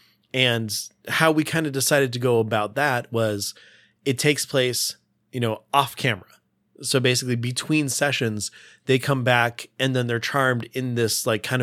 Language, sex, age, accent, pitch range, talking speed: English, male, 20-39, American, 110-130 Hz, 170 wpm